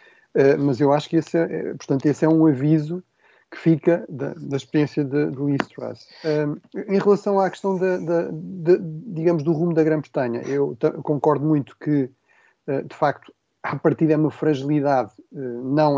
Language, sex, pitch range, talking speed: Portuguese, male, 135-160 Hz, 190 wpm